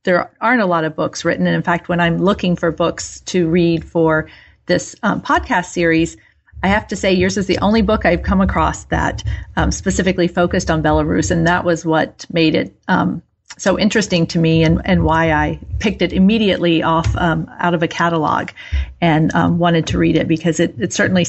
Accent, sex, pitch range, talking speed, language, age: American, female, 165-185 Hz, 210 wpm, English, 40-59